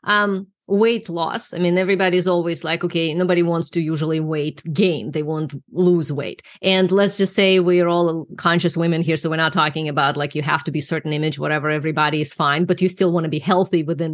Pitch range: 175-235 Hz